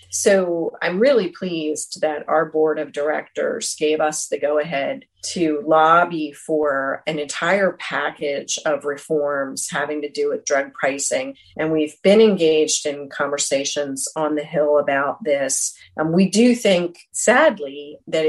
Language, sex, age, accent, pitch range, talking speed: English, female, 40-59, American, 150-175 Hz, 145 wpm